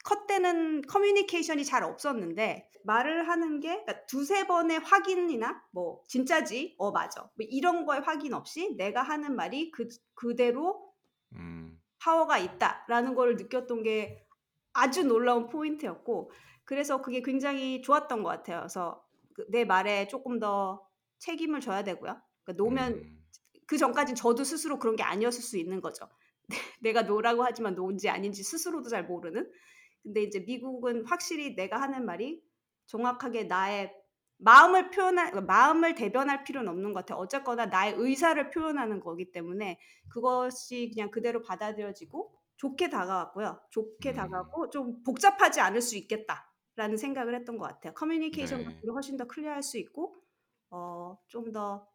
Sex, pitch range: female, 205-305 Hz